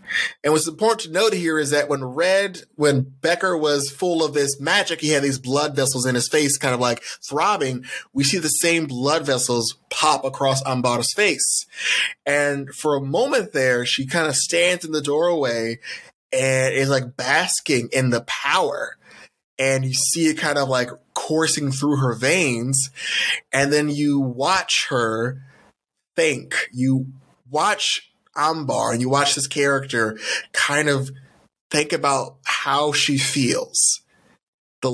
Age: 20-39